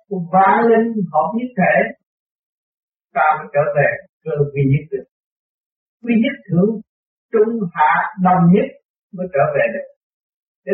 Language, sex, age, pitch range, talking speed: Vietnamese, male, 60-79, 155-230 Hz, 140 wpm